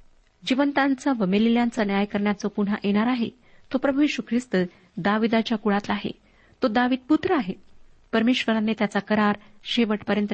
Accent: native